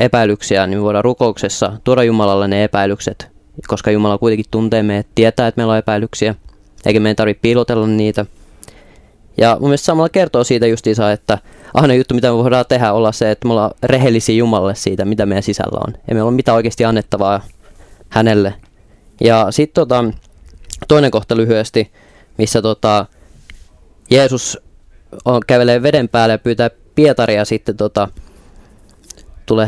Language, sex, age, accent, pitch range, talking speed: Finnish, male, 20-39, native, 105-125 Hz, 150 wpm